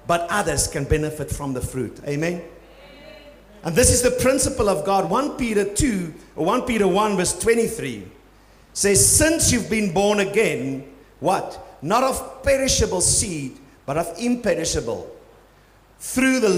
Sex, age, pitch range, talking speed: male, 50-69, 150-235 Hz, 140 wpm